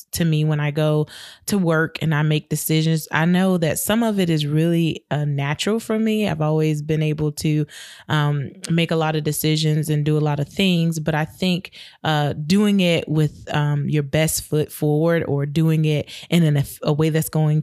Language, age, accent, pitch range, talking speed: English, 20-39, American, 150-170 Hz, 205 wpm